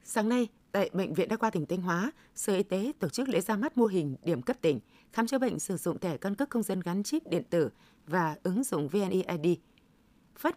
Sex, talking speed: female, 240 wpm